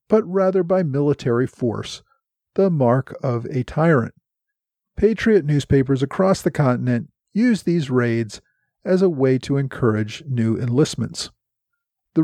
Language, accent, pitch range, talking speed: English, American, 125-175 Hz, 125 wpm